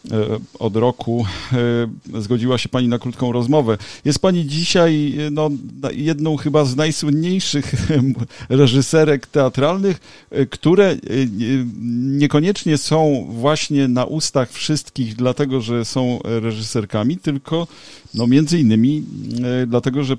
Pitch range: 115-140 Hz